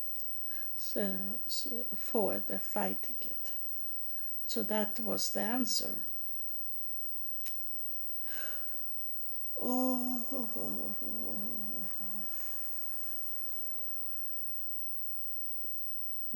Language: English